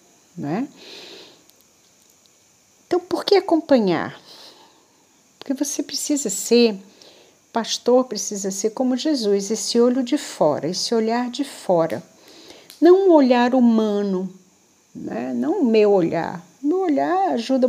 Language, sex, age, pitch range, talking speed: Portuguese, female, 50-69, 200-275 Hz, 115 wpm